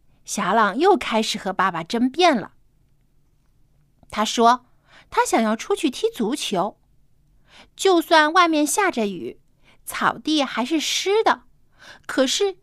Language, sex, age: Chinese, female, 50-69